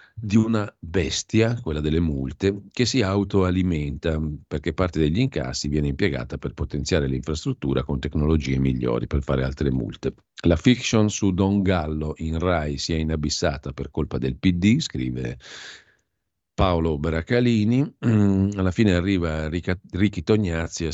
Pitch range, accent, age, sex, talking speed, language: 75-100 Hz, native, 50-69, male, 140 wpm, Italian